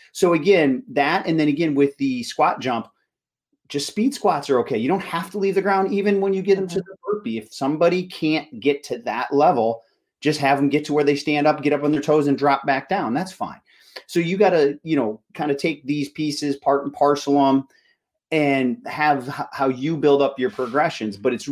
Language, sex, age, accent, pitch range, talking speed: English, male, 30-49, American, 125-160 Hz, 230 wpm